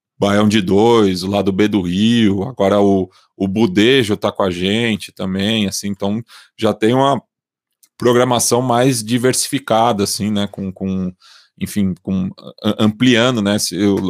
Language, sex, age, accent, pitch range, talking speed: Portuguese, male, 20-39, Brazilian, 95-115 Hz, 150 wpm